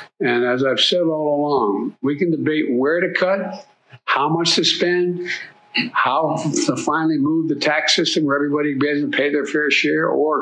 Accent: American